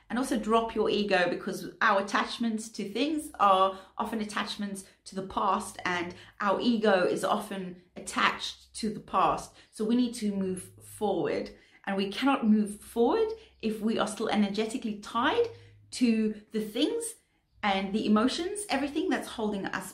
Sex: female